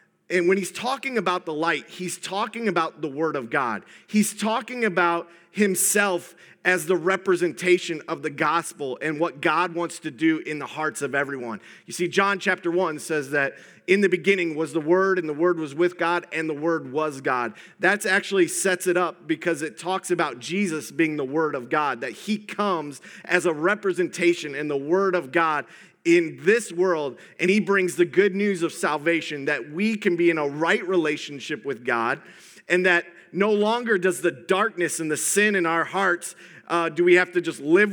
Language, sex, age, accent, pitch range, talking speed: English, male, 30-49, American, 155-190 Hz, 200 wpm